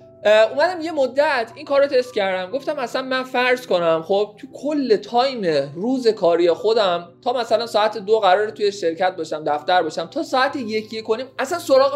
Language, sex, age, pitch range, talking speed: Persian, male, 20-39, 205-280 Hz, 180 wpm